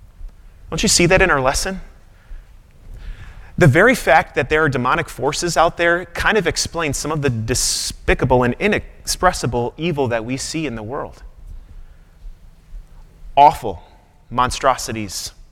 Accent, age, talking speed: American, 30-49, 135 wpm